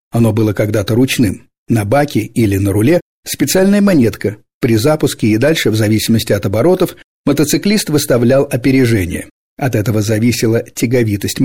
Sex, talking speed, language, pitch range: male, 135 wpm, Russian, 110-140 Hz